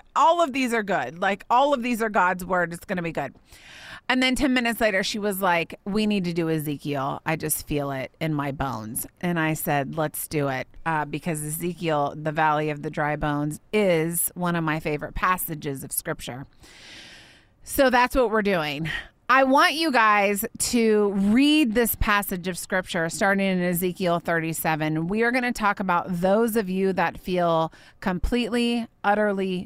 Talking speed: 185 wpm